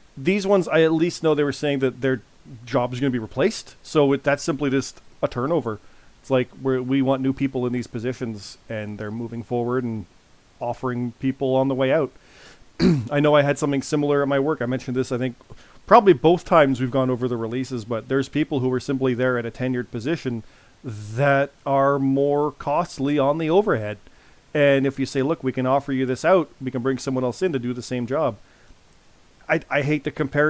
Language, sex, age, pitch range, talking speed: English, male, 30-49, 125-155 Hz, 215 wpm